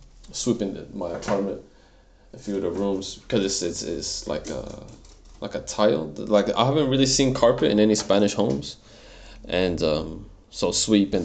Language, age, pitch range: English, 20-39, 90-105 Hz